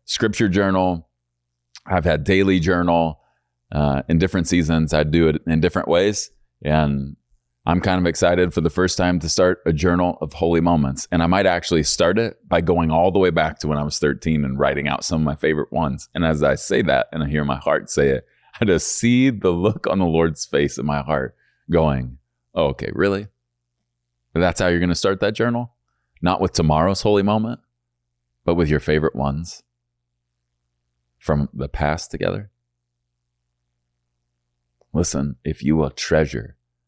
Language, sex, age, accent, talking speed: English, male, 30-49, American, 180 wpm